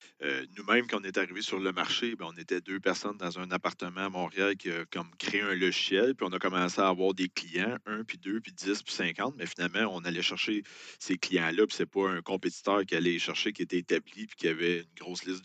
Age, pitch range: 40-59, 90-105 Hz